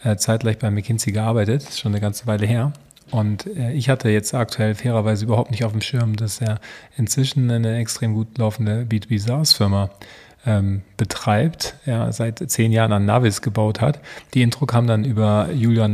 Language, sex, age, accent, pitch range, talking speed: German, male, 40-59, German, 110-130 Hz, 170 wpm